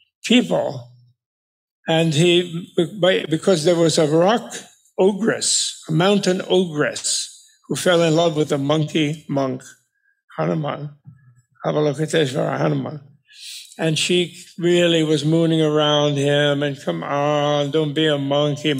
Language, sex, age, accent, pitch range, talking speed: English, male, 60-79, American, 145-180 Hz, 120 wpm